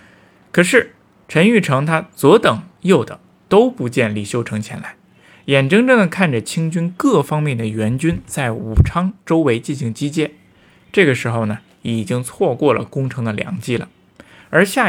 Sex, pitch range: male, 115-165 Hz